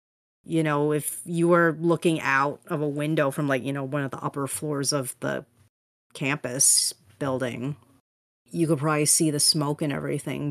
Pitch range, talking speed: 135-155 Hz, 175 wpm